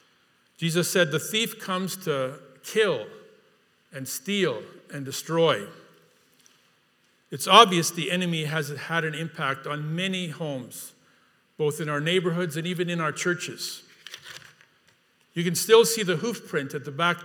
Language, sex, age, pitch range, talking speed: English, male, 50-69, 145-185 Hz, 145 wpm